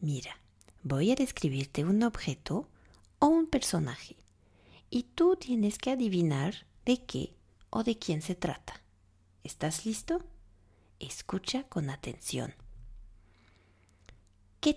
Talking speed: 110 wpm